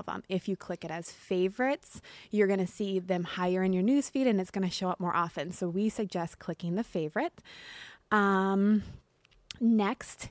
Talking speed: 175 wpm